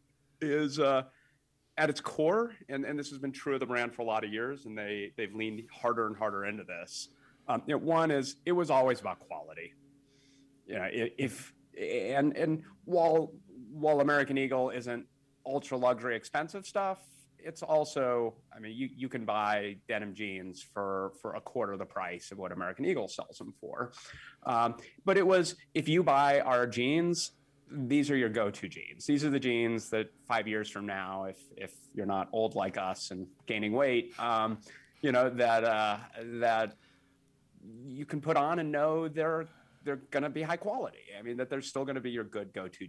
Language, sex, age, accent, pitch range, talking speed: English, male, 30-49, American, 110-145 Hz, 190 wpm